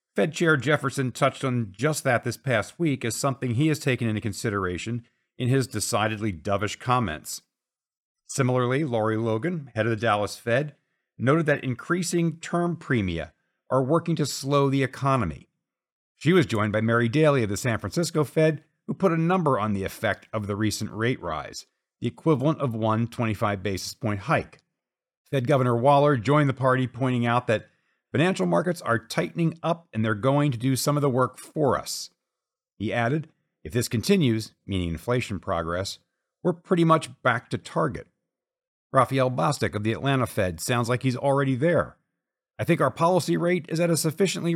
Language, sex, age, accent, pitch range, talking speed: English, male, 50-69, American, 115-160 Hz, 175 wpm